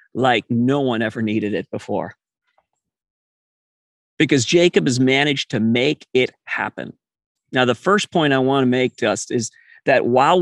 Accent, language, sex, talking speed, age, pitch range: American, English, male, 160 wpm, 40-59, 125-160 Hz